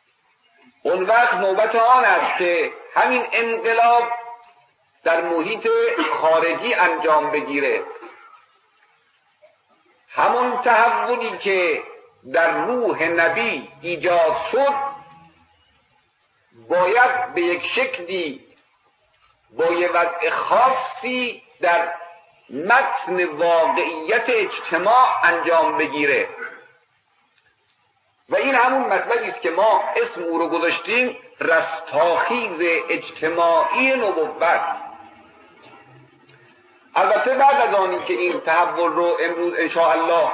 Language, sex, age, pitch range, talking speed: Persian, male, 50-69, 170-265 Hz, 90 wpm